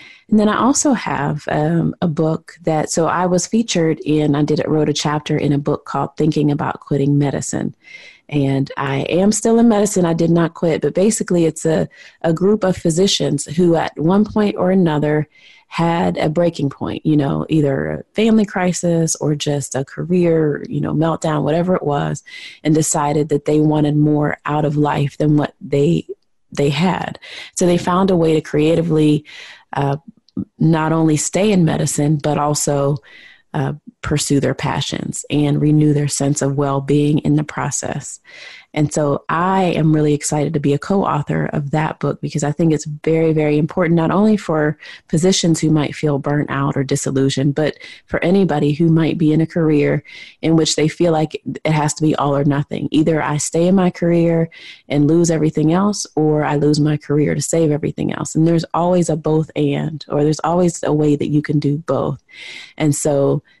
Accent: American